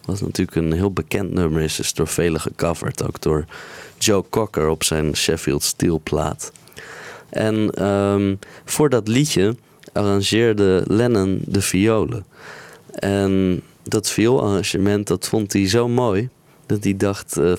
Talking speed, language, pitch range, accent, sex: 140 wpm, Dutch, 90-110 Hz, Dutch, male